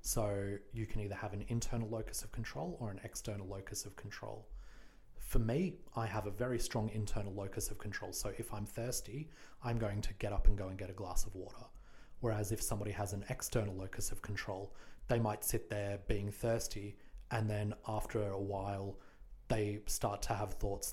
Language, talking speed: English, 200 wpm